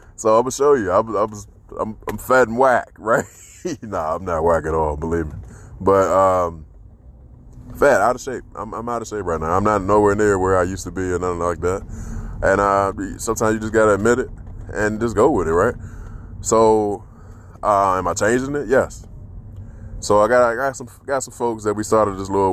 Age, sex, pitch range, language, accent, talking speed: 20-39, male, 90-110 Hz, English, American, 225 wpm